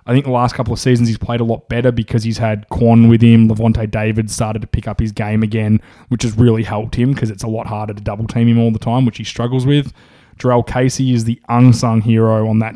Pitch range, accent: 110-120 Hz, Australian